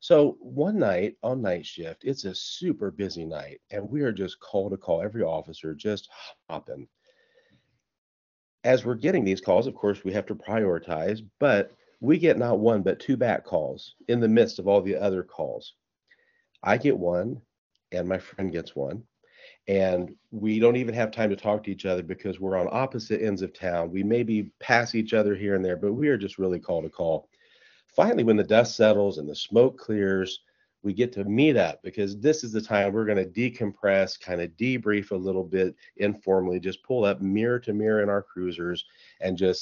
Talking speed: 200 wpm